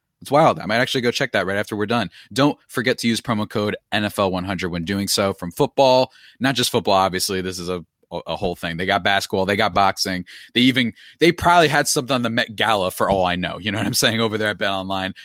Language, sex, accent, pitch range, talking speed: English, male, American, 95-125 Hz, 250 wpm